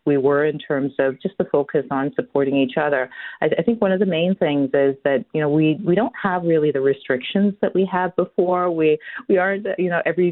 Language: English